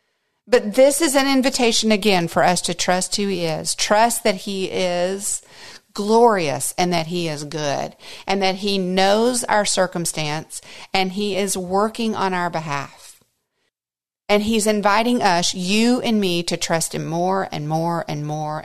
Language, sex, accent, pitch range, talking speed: English, female, American, 180-255 Hz, 165 wpm